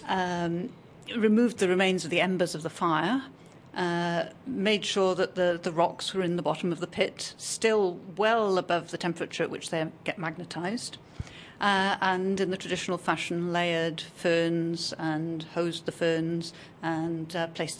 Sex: female